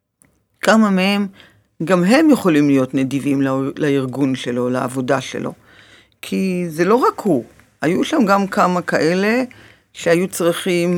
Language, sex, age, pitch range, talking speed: Hebrew, female, 50-69, 120-170 Hz, 135 wpm